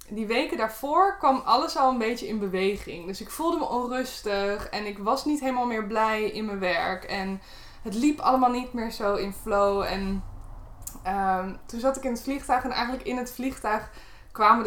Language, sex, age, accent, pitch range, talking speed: Dutch, female, 20-39, Dutch, 190-230 Hz, 195 wpm